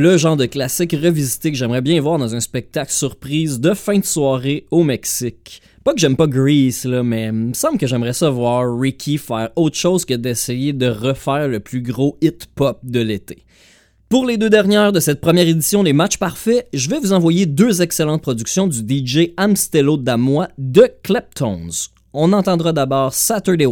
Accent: Canadian